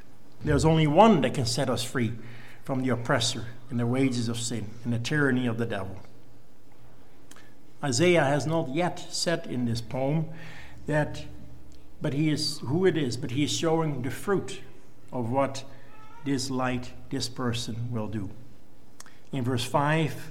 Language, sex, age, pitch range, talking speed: English, male, 60-79, 120-160 Hz, 160 wpm